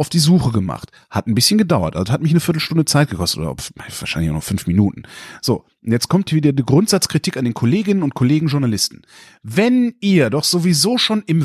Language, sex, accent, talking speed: German, male, German, 210 wpm